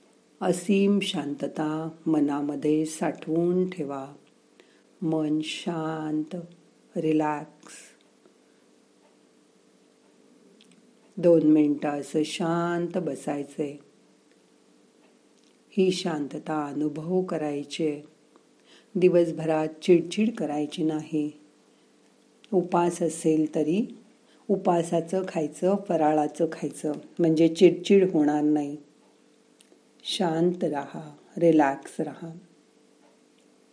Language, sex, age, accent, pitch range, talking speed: Marathi, female, 50-69, native, 150-180 Hz, 55 wpm